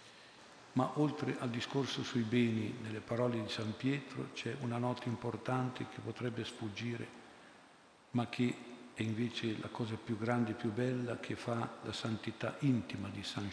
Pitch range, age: 110-125 Hz, 50-69